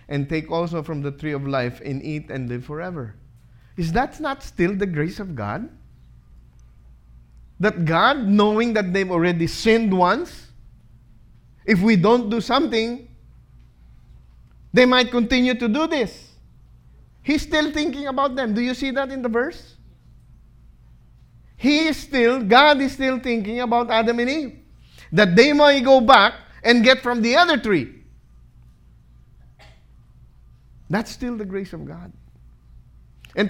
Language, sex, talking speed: English, male, 145 wpm